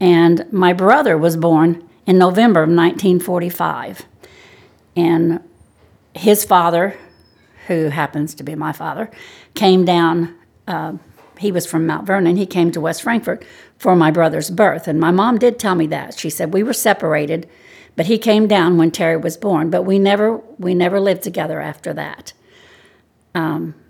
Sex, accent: female, American